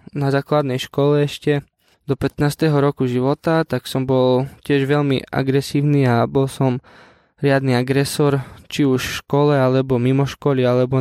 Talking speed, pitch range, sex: 145 wpm, 130-145 Hz, male